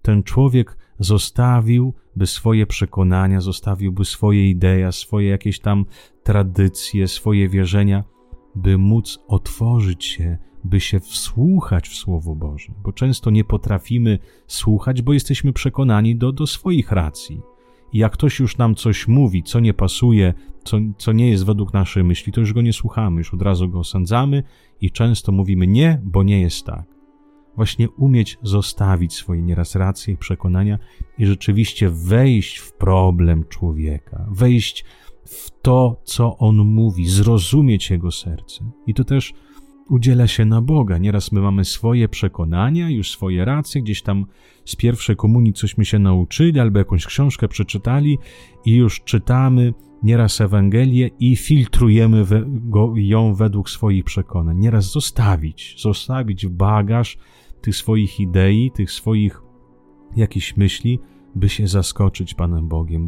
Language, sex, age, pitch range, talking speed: Italian, male, 30-49, 95-115 Hz, 145 wpm